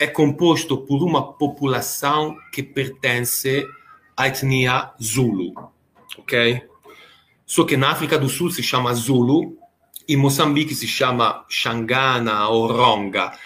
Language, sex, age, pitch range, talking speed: Portuguese, male, 40-59, 120-145 Hz, 125 wpm